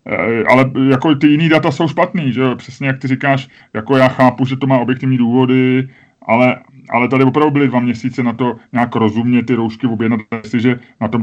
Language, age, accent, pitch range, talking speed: Czech, 30-49, native, 110-130 Hz, 200 wpm